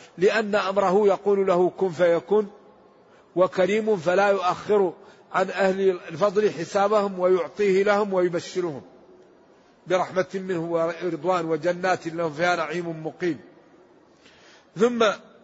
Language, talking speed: Arabic, 95 wpm